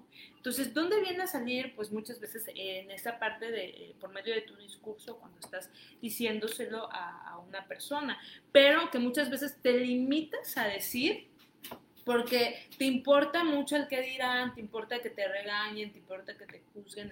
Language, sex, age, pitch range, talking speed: Spanish, female, 20-39, 195-260 Hz, 170 wpm